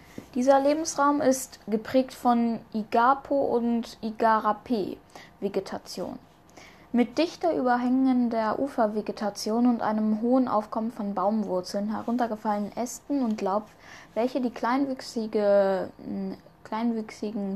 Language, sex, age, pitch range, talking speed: German, female, 10-29, 210-245 Hz, 90 wpm